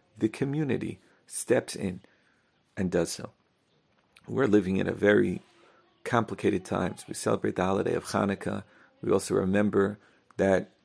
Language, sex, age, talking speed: English, male, 50-69, 140 wpm